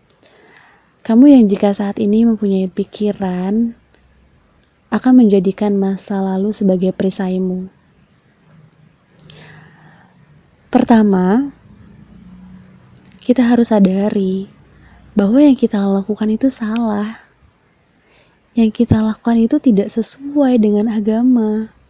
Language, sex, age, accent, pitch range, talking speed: Indonesian, female, 20-39, native, 195-225 Hz, 85 wpm